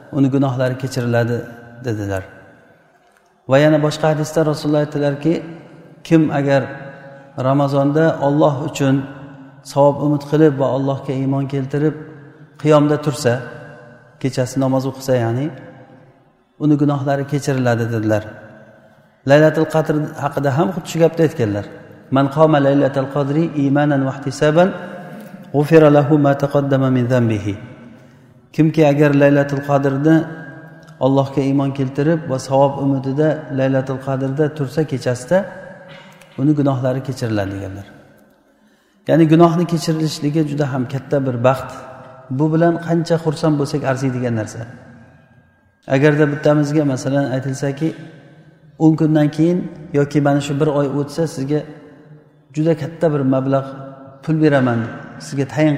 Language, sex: Russian, male